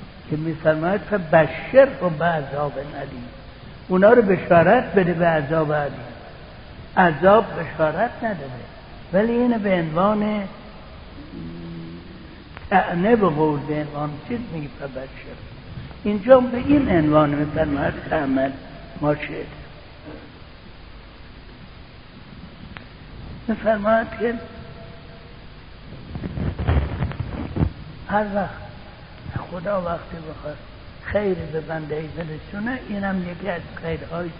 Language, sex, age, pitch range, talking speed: Persian, male, 60-79, 155-210 Hz, 90 wpm